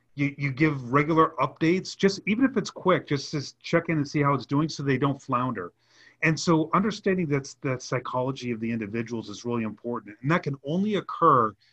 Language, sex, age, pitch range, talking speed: English, male, 30-49, 120-150 Hz, 200 wpm